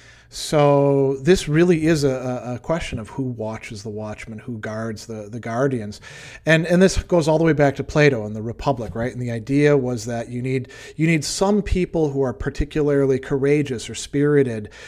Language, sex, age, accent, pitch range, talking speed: English, male, 40-59, American, 115-145 Hz, 195 wpm